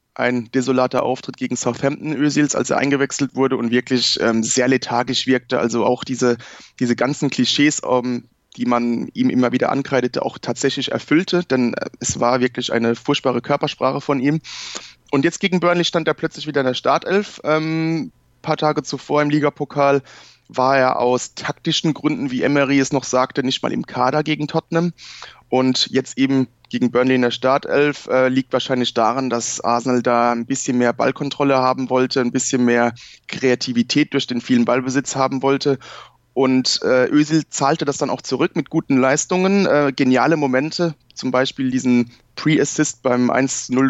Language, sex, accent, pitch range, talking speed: German, male, German, 125-145 Hz, 170 wpm